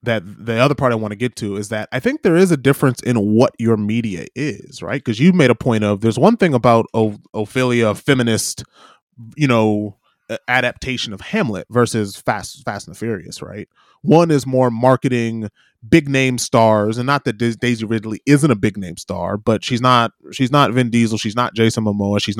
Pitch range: 110-130 Hz